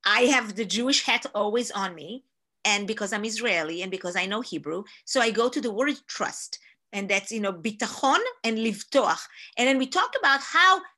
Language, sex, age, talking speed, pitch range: English, female, 40-59, 200 wpm, 230-315 Hz